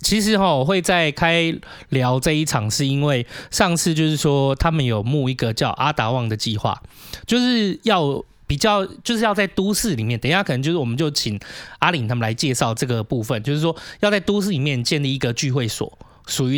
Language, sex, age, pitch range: Chinese, male, 20-39, 120-165 Hz